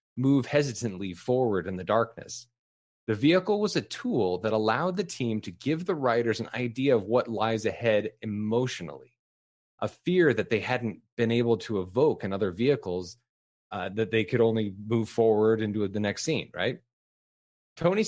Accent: American